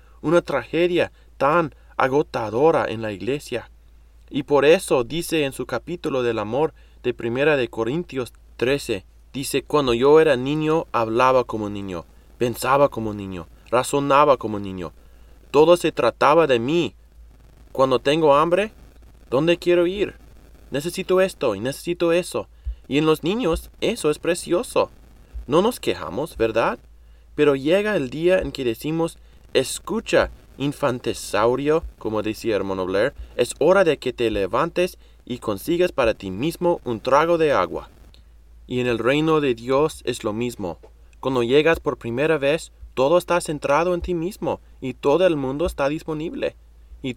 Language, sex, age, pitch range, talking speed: English, male, 20-39, 105-165 Hz, 150 wpm